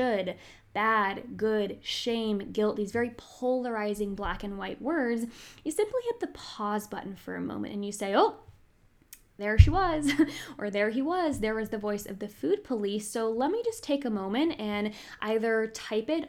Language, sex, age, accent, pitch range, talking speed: English, female, 10-29, American, 200-260 Hz, 190 wpm